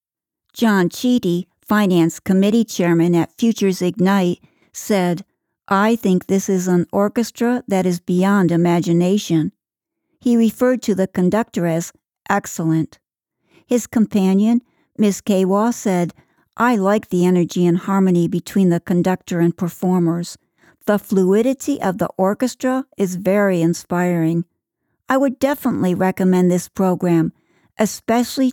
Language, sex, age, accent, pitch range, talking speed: English, female, 60-79, American, 180-230 Hz, 120 wpm